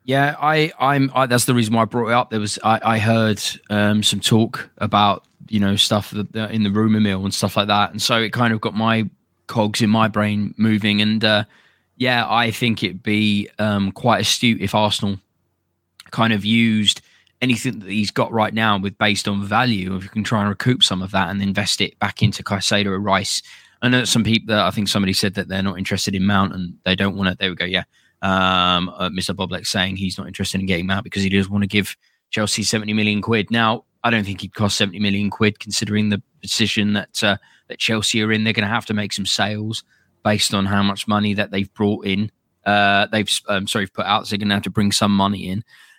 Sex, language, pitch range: male, English, 100-110 Hz